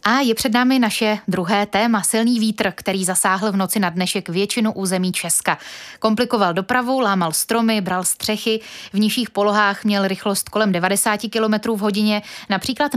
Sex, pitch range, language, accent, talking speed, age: female, 190-220 Hz, Czech, native, 160 wpm, 20-39